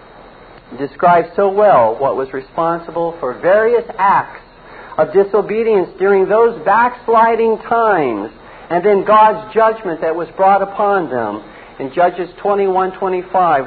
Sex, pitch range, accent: male, 170-230 Hz, American